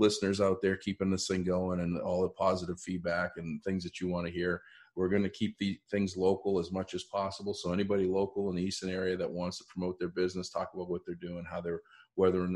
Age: 40-59